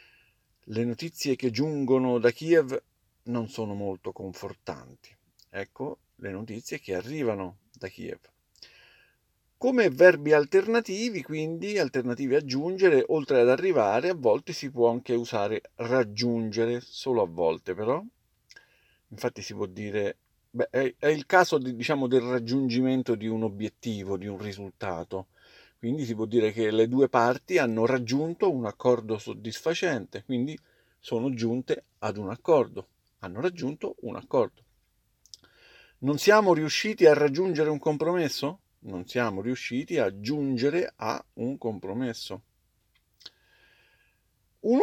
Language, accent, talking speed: Italian, native, 125 wpm